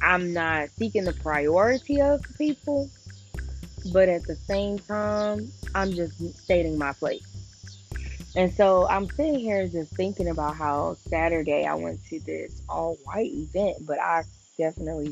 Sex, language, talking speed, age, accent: female, English, 145 wpm, 20-39, American